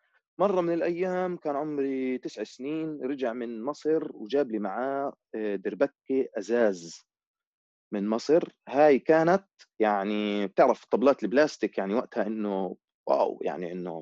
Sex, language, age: male, Arabic, 30-49